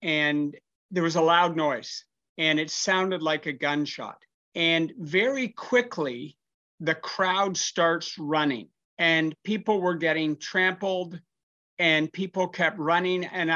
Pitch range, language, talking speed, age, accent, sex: 155-185 Hz, English, 130 wpm, 50-69, American, male